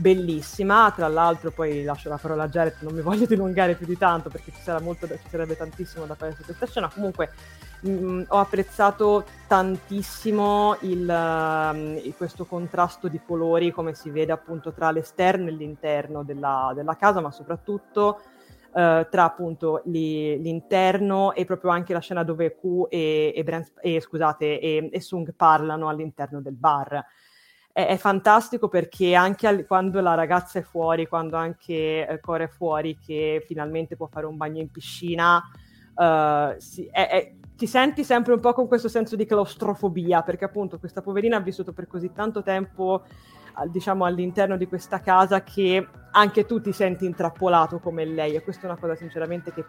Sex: female